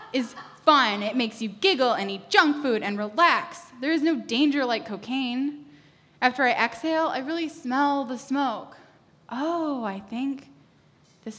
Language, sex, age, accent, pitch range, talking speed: English, female, 10-29, American, 205-270 Hz, 160 wpm